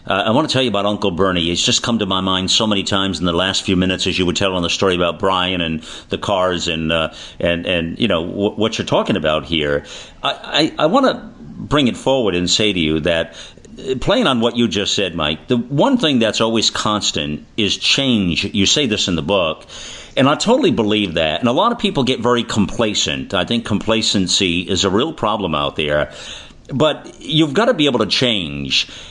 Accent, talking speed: American, 225 wpm